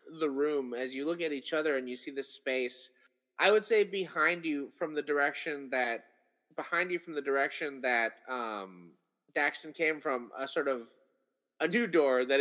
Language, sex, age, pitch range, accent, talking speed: English, male, 20-39, 125-155 Hz, American, 190 wpm